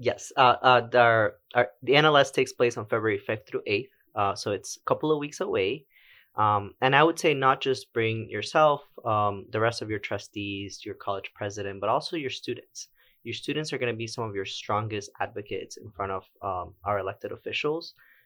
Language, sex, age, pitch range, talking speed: English, male, 20-39, 100-130 Hz, 205 wpm